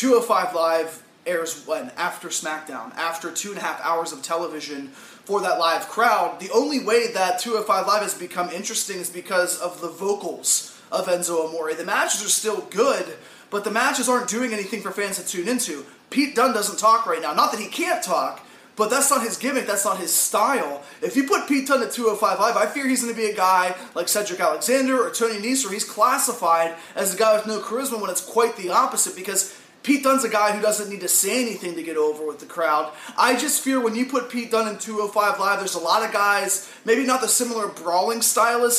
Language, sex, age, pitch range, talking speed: English, male, 20-39, 180-235 Hz, 225 wpm